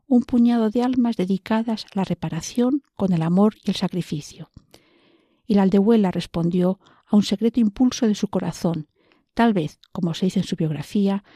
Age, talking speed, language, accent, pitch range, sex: 50-69, 175 wpm, Spanish, Spanish, 175-225 Hz, female